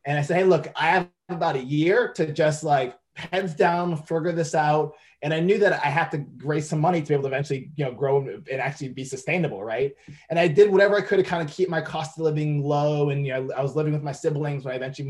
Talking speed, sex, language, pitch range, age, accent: 270 wpm, male, English, 140-170 Hz, 20-39, American